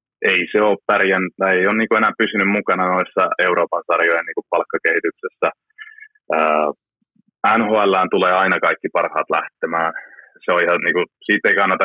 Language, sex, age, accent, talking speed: Finnish, male, 30-49, native, 145 wpm